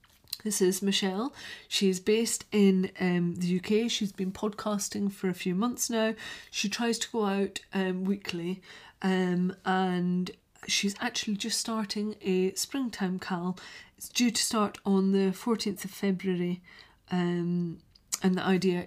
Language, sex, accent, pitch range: English, female, British, 185-210 Hz